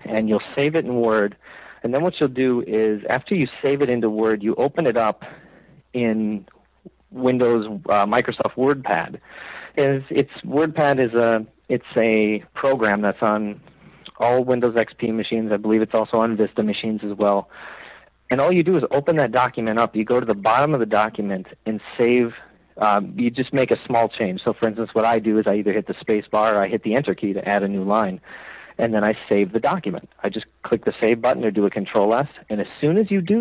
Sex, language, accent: male, English, American